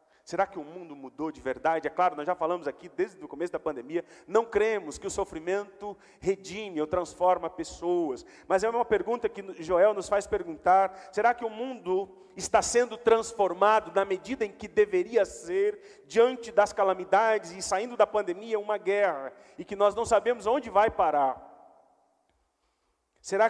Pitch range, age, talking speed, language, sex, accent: 175-225 Hz, 40-59, 170 wpm, Portuguese, male, Brazilian